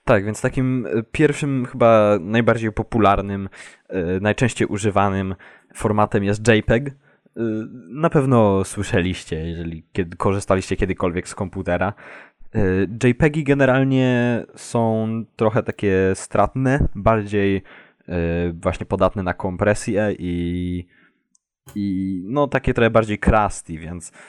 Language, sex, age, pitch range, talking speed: Polish, male, 20-39, 95-115 Hz, 95 wpm